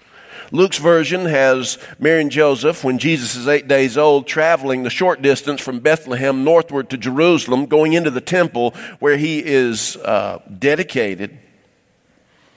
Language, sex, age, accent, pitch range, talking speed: English, male, 50-69, American, 120-160 Hz, 145 wpm